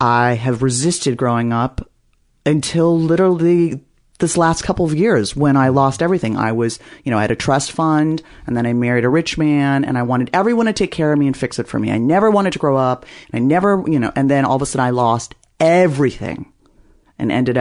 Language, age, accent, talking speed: English, 40-59, American, 230 wpm